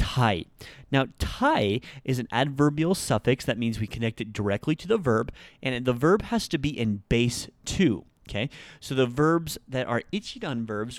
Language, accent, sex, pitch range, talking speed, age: English, American, male, 115-145 Hz, 175 wpm, 30-49